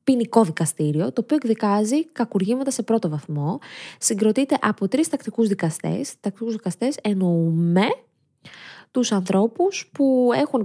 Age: 20-39